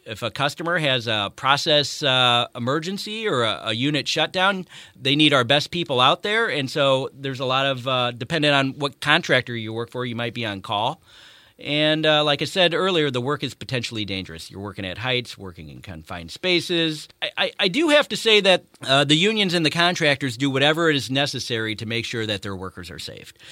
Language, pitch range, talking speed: English, 120-160 Hz, 215 wpm